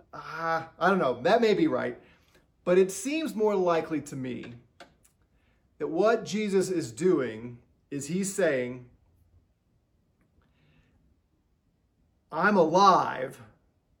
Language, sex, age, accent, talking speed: English, male, 40-59, American, 105 wpm